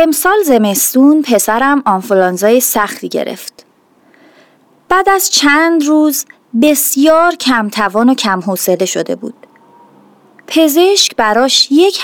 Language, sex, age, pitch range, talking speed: Persian, female, 30-49, 205-315 Hz, 105 wpm